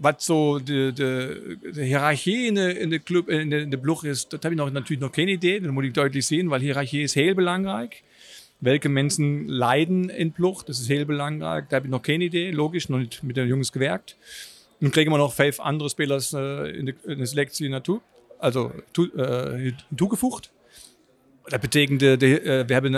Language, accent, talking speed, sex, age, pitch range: Dutch, German, 195 wpm, male, 50-69, 135-175 Hz